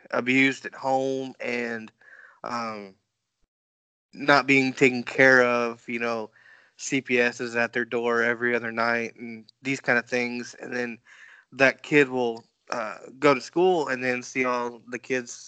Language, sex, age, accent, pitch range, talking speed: English, male, 20-39, American, 115-130 Hz, 155 wpm